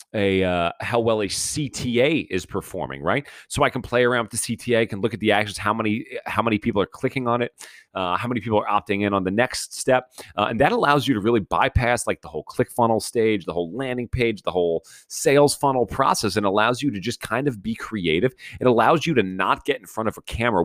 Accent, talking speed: American, 250 wpm